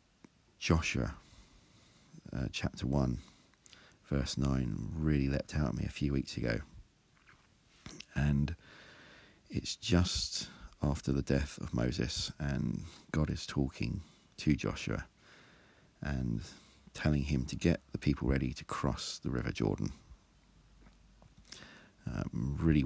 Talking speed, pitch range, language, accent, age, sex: 115 wpm, 65-80 Hz, English, British, 40-59, male